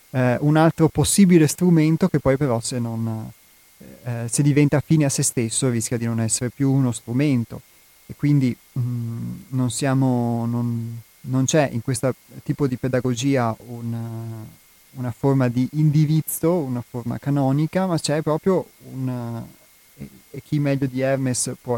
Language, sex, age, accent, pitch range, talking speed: Italian, male, 30-49, native, 120-140 Hz, 155 wpm